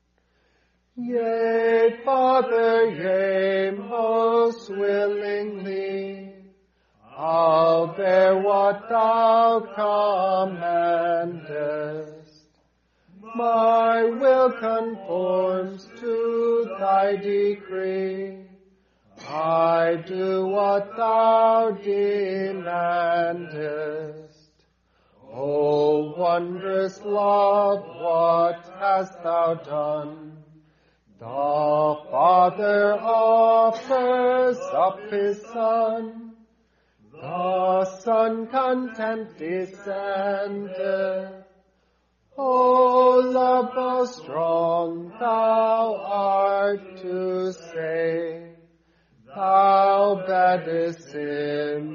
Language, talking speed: English, 55 wpm